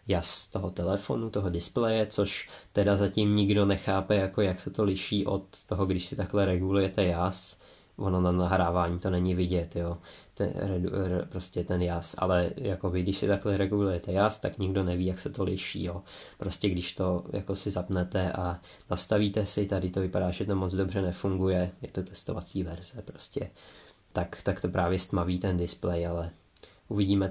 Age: 20-39